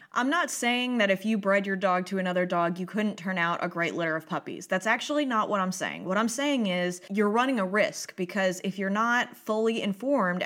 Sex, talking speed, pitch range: female, 235 wpm, 185-260 Hz